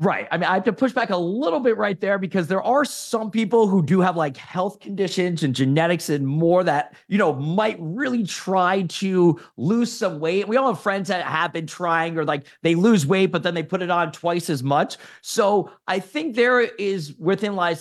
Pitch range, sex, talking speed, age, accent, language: 160-205 Hz, male, 225 wpm, 30-49, American, English